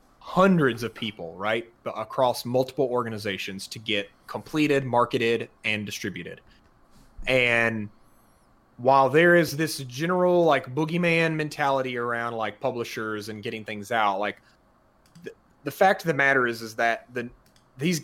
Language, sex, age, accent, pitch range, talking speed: English, male, 30-49, American, 115-150 Hz, 135 wpm